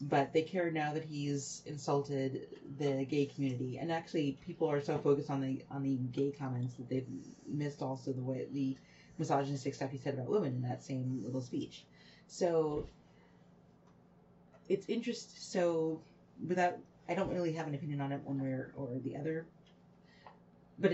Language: English